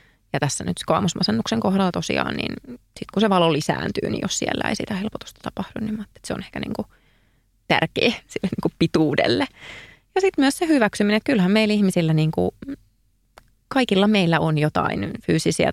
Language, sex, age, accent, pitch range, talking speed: Finnish, female, 20-39, native, 155-215 Hz, 165 wpm